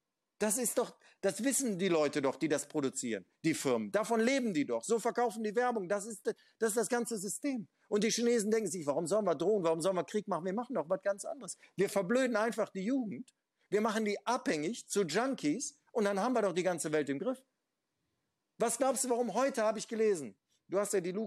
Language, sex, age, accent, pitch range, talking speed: German, male, 50-69, German, 160-235 Hz, 230 wpm